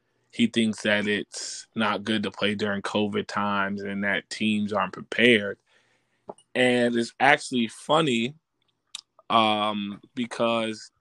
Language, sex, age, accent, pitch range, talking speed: English, male, 20-39, American, 105-115 Hz, 120 wpm